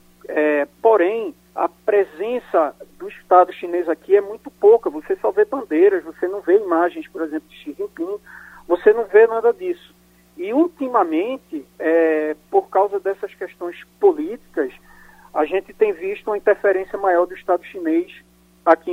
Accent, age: Brazilian, 40-59